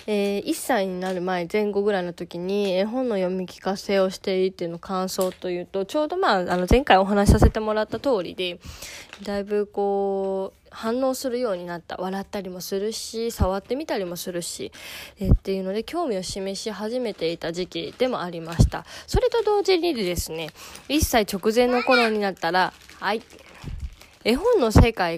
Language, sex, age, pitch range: Japanese, female, 20-39, 180-230 Hz